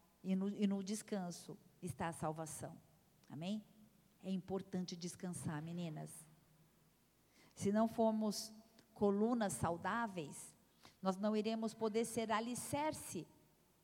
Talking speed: 105 wpm